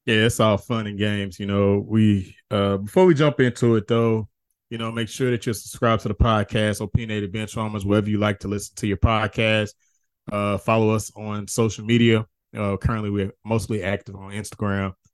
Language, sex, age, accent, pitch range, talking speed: English, male, 20-39, American, 100-120 Hz, 195 wpm